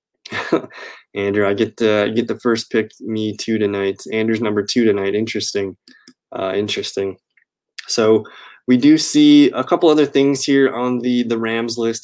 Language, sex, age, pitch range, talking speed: English, male, 20-39, 110-135 Hz, 160 wpm